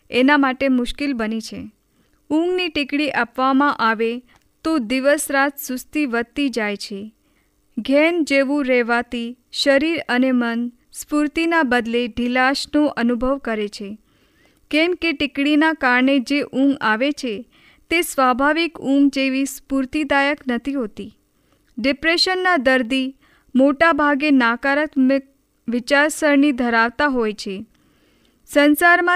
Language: Hindi